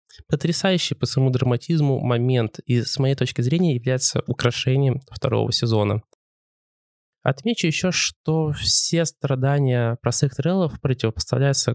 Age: 20-39